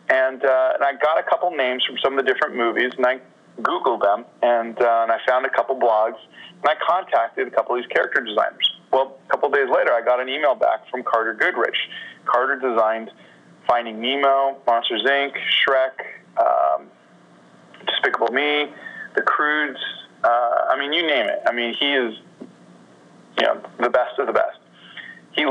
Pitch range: 115-135 Hz